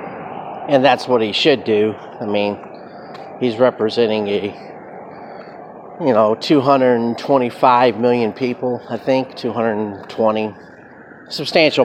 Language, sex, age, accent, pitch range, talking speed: English, male, 40-59, American, 105-130 Hz, 100 wpm